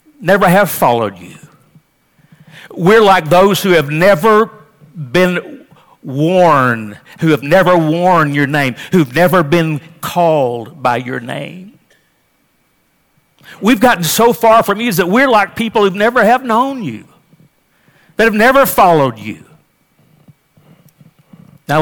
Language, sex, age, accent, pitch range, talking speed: English, male, 60-79, American, 150-200 Hz, 125 wpm